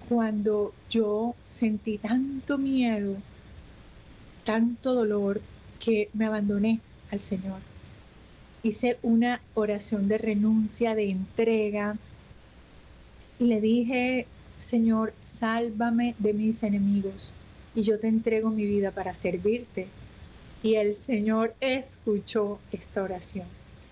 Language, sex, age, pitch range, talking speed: Spanish, female, 30-49, 205-230 Hz, 100 wpm